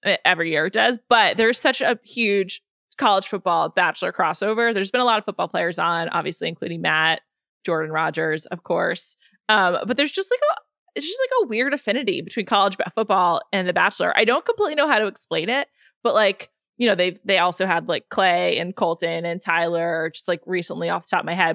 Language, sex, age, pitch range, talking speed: English, female, 20-39, 180-240 Hz, 215 wpm